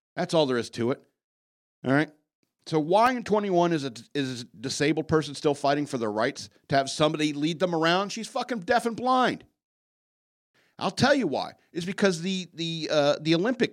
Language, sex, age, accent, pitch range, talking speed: English, male, 50-69, American, 150-215 Hz, 195 wpm